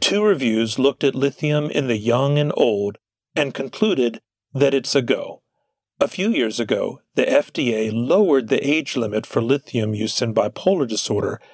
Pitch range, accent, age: 115-145 Hz, American, 40-59